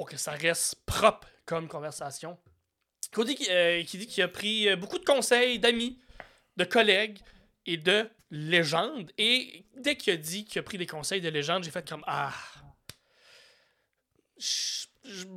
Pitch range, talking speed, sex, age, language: 165-210 Hz, 150 wpm, male, 30-49, French